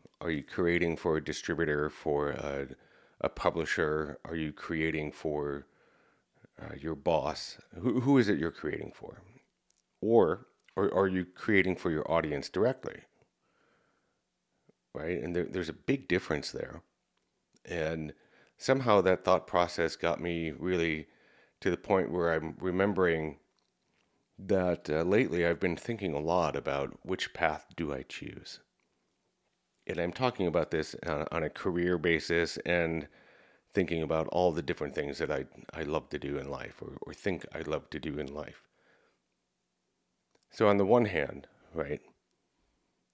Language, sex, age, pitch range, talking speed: English, male, 40-59, 75-90 Hz, 150 wpm